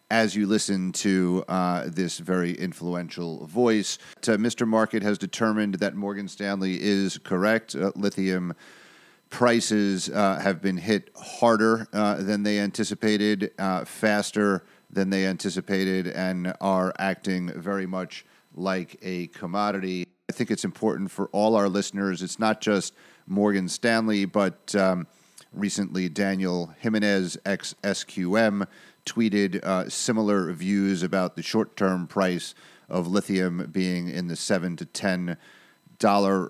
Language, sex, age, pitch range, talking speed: English, male, 40-59, 90-105 Hz, 130 wpm